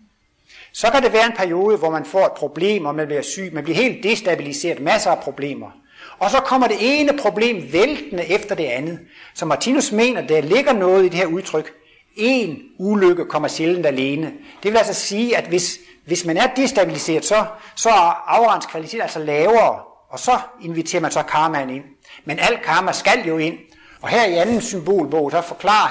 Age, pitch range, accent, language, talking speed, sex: 60-79, 150-220 Hz, native, Danish, 195 wpm, male